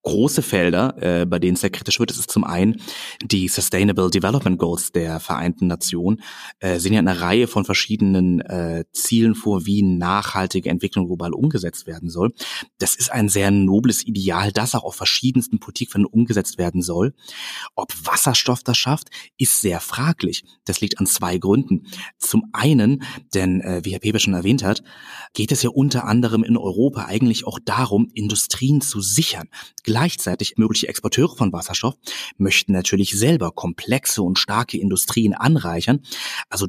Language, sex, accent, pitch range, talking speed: German, male, German, 95-120 Hz, 165 wpm